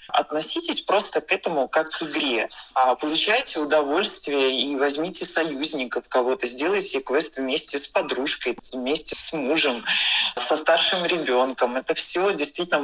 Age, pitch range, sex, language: 20-39, 145-195 Hz, male, Russian